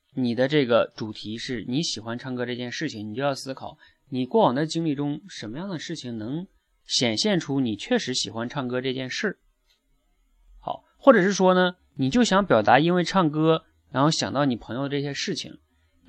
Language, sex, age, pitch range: Chinese, male, 30-49, 120-155 Hz